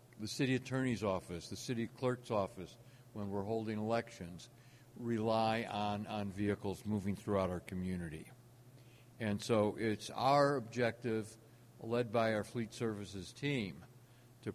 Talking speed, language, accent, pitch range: 130 wpm, English, American, 110-125 Hz